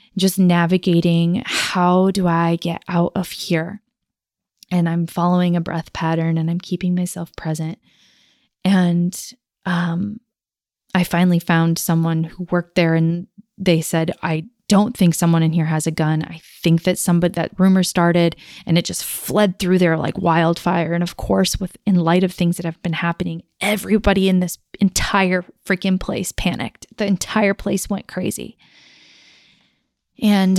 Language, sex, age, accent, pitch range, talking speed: English, female, 20-39, American, 165-190 Hz, 160 wpm